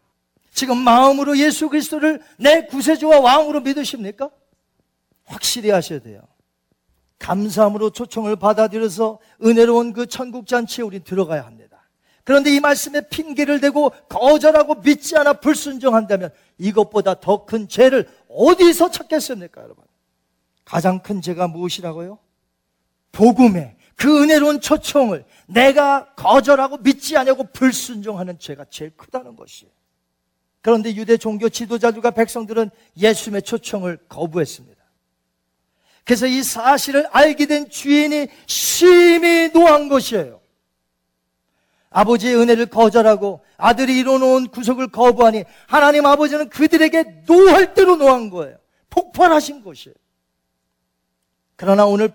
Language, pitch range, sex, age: Korean, 180-280 Hz, male, 40-59